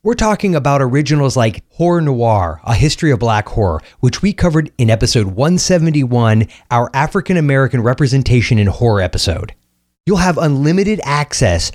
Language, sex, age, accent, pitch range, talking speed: English, male, 30-49, American, 115-160 Hz, 145 wpm